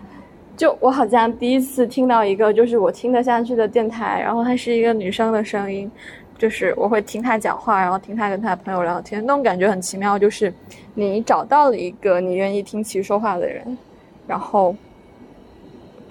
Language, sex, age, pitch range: Chinese, female, 20-39, 205-245 Hz